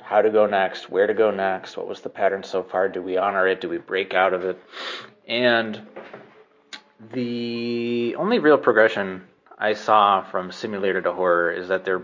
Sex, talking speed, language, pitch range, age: male, 190 wpm, English, 90-120 Hz, 30-49